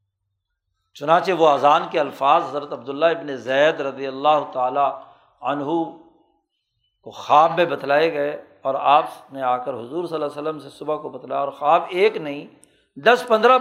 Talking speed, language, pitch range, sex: 170 wpm, Urdu, 140-190 Hz, male